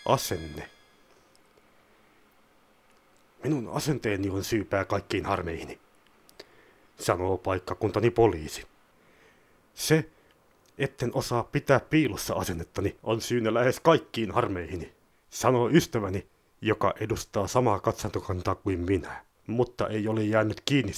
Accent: native